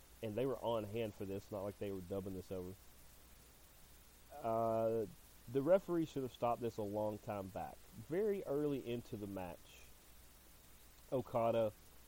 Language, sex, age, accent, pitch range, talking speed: English, male, 30-49, American, 90-115 Hz, 155 wpm